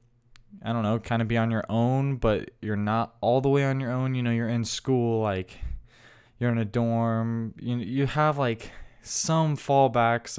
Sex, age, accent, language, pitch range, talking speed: male, 10-29, American, English, 110-125 Hz, 195 wpm